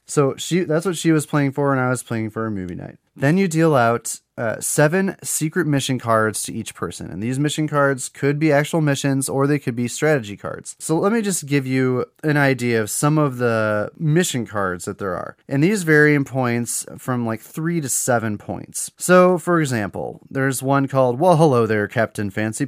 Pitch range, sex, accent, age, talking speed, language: 115-155 Hz, male, American, 30-49, 215 wpm, English